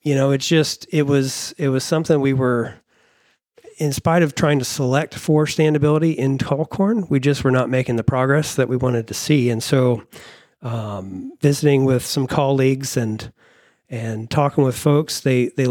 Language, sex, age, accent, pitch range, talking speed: English, male, 40-59, American, 125-145 Hz, 185 wpm